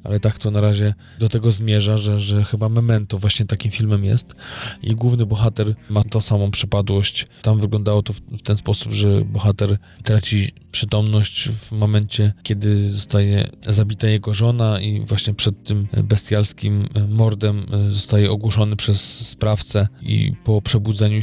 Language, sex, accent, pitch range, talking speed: Polish, male, native, 105-115 Hz, 150 wpm